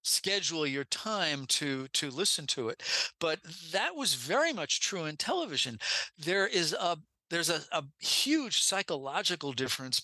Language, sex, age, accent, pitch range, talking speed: English, male, 50-69, American, 130-170 Hz, 150 wpm